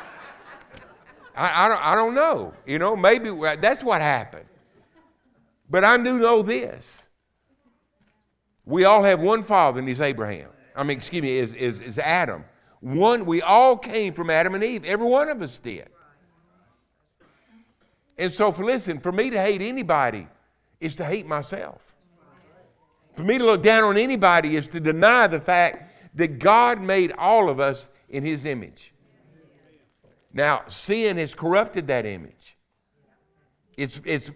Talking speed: 155 wpm